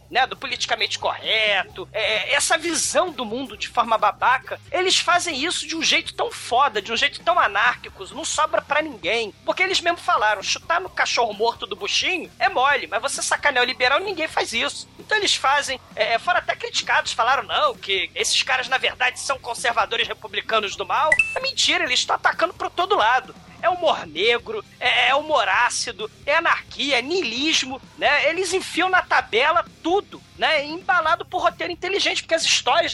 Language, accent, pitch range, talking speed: Portuguese, Brazilian, 265-360 Hz, 185 wpm